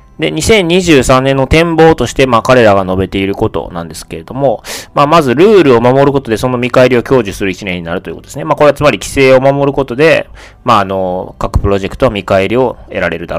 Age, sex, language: 20-39, male, Japanese